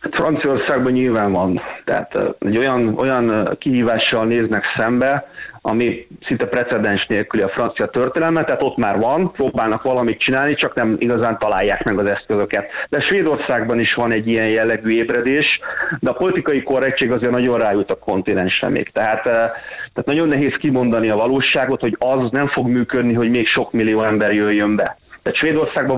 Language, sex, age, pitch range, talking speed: Hungarian, male, 30-49, 110-135 Hz, 160 wpm